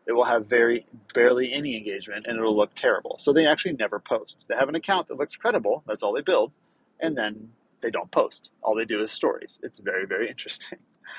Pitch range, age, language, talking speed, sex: 120-165 Hz, 30-49, English, 220 wpm, male